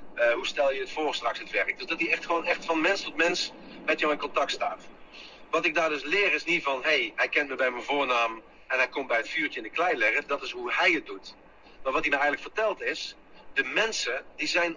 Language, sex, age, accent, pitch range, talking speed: Dutch, male, 50-69, Dutch, 120-170 Hz, 270 wpm